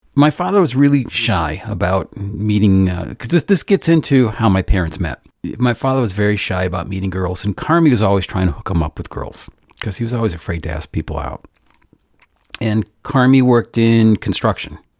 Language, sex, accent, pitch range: English, male, American, 90-110 Hz